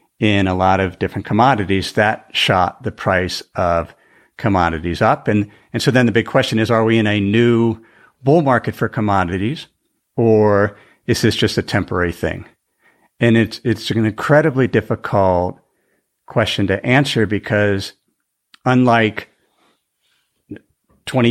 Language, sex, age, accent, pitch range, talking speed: English, male, 50-69, American, 100-115 Hz, 140 wpm